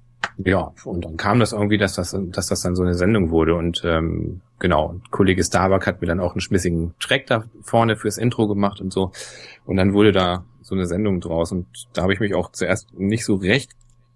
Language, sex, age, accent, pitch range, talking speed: German, male, 30-49, German, 90-115 Hz, 220 wpm